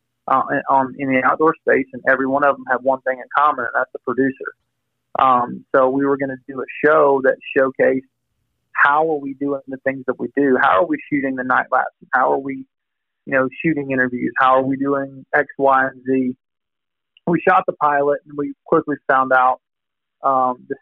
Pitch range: 130-145 Hz